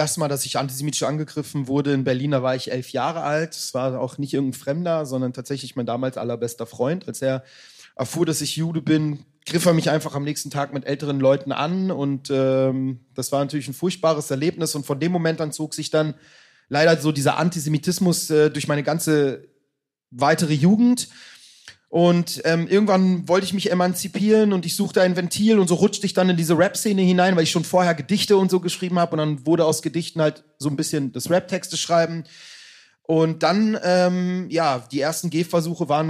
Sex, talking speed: male, 200 wpm